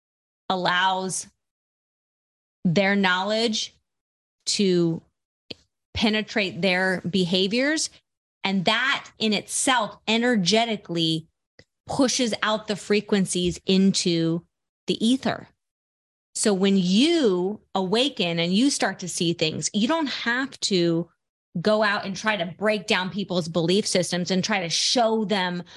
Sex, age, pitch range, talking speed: female, 30-49, 175-215 Hz, 110 wpm